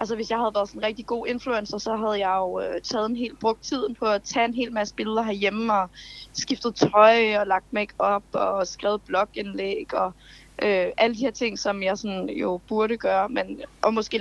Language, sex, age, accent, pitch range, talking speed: Danish, female, 20-39, native, 200-245 Hz, 215 wpm